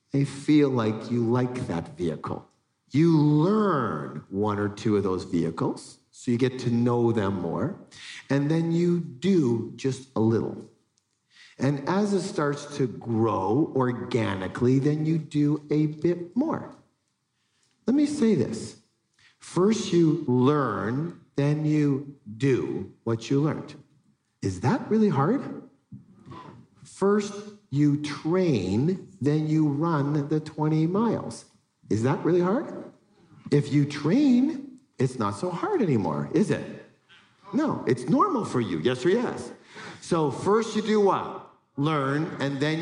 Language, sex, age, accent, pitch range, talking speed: English, male, 50-69, American, 130-190 Hz, 135 wpm